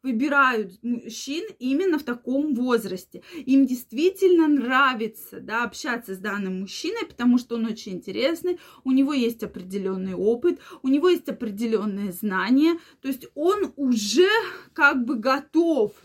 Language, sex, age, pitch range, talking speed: Russian, female, 20-39, 220-280 Hz, 135 wpm